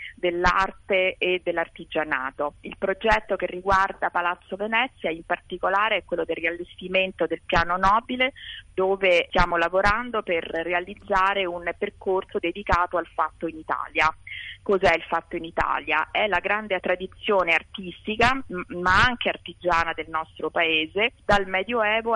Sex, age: female, 30-49